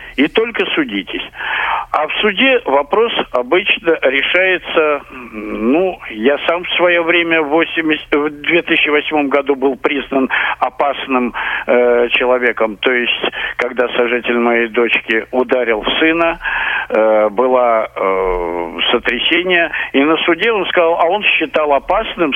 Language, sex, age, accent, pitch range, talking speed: Russian, male, 50-69, native, 120-160 Hz, 120 wpm